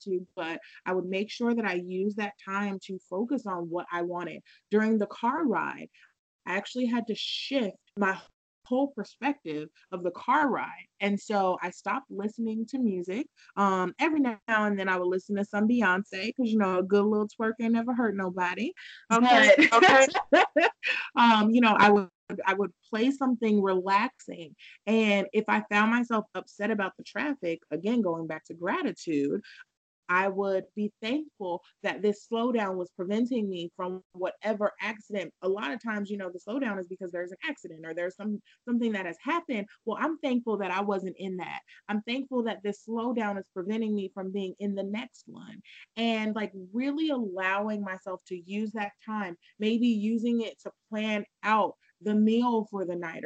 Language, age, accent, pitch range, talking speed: English, 30-49, American, 190-235 Hz, 185 wpm